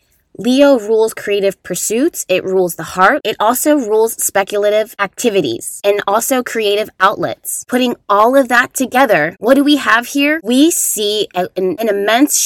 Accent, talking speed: American, 155 wpm